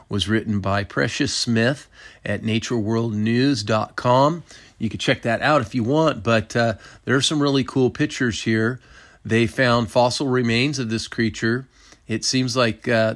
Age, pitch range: 40-59, 105-125 Hz